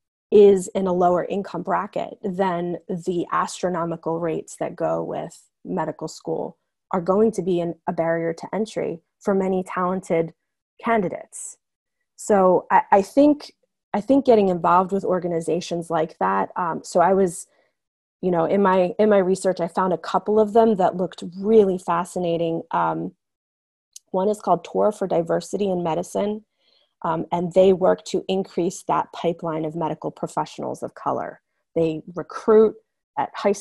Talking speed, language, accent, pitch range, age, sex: 155 wpm, English, American, 170-195 Hz, 20-39, female